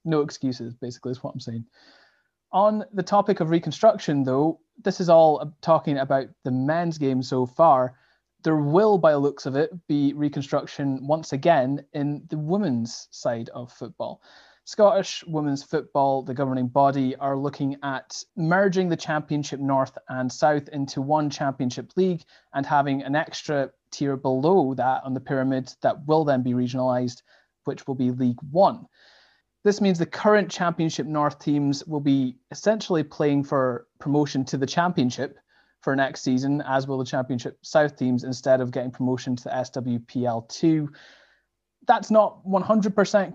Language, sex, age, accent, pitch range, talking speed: English, male, 30-49, British, 130-160 Hz, 160 wpm